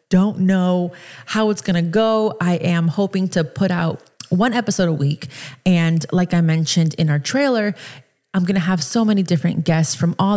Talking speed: 195 wpm